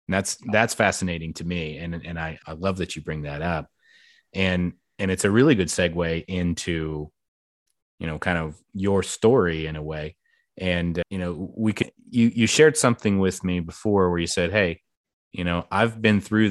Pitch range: 85-105 Hz